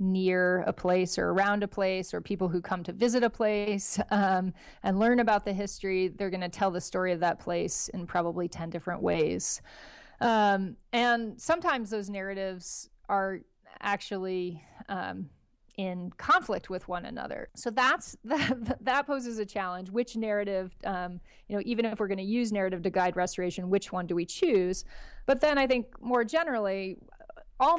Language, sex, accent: English, female, American